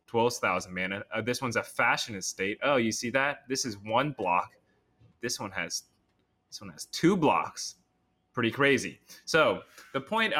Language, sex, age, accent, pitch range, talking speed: English, male, 20-39, American, 105-140 Hz, 165 wpm